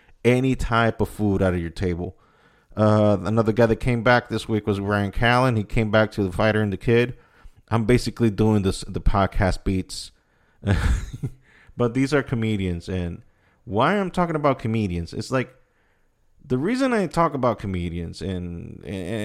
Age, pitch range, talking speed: 30-49, 100-125 Hz, 170 wpm